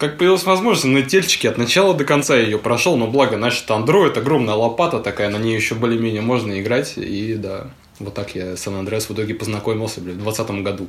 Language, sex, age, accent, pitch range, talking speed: Russian, male, 20-39, native, 105-135 Hz, 210 wpm